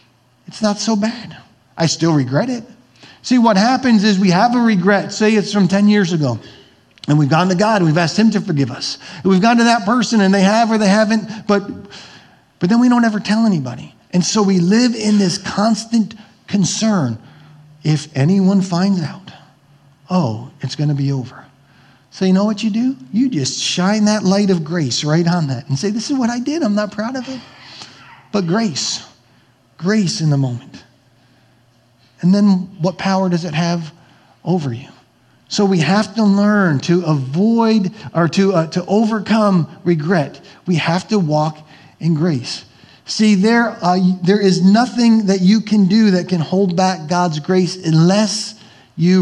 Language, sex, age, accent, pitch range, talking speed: English, male, 40-59, American, 150-210 Hz, 185 wpm